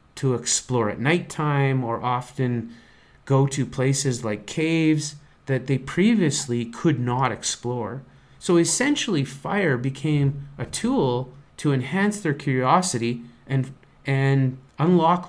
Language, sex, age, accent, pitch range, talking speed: English, male, 30-49, American, 115-150 Hz, 120 wpm